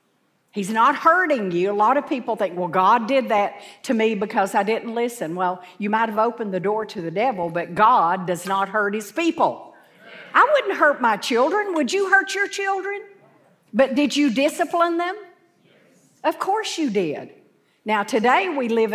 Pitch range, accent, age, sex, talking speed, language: 185-250 Hz, American, 50-69, female, 185 wpm, English